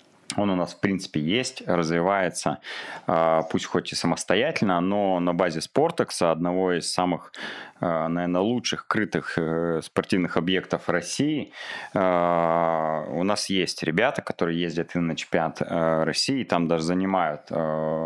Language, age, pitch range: Russian, 20-39, 80-90 Hz